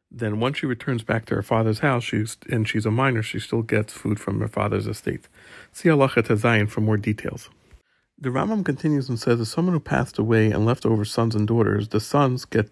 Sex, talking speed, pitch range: male, 215 wpm, 105-120 Hz